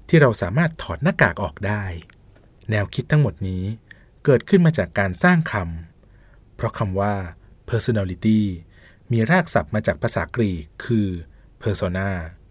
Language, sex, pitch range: Thai, male, 95-125 Hz